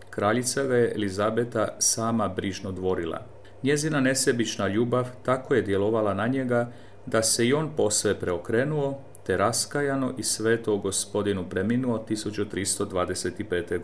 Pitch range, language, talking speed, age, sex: 100-125 Hz, Croatian, 120 wpm, 40-59, male